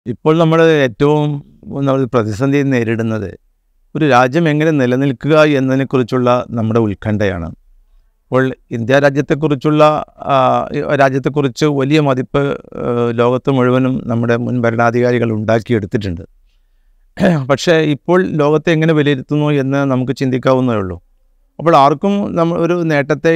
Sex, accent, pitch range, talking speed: male, native, 120-150 Hz, 95 wpm